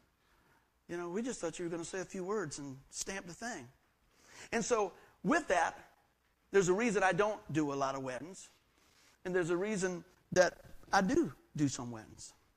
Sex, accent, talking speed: male, American, 195 wpm